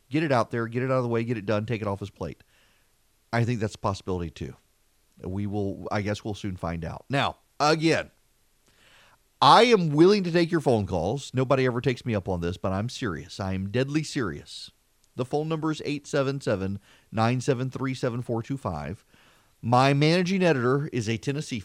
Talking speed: 185 wpm